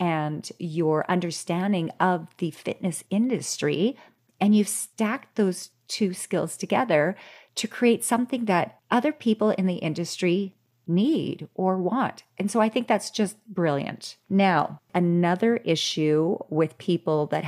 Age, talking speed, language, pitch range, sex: 30-49, 135 wpm, English, 155-195 Hz, female